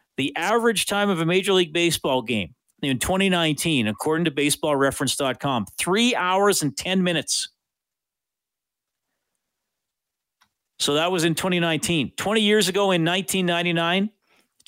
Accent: American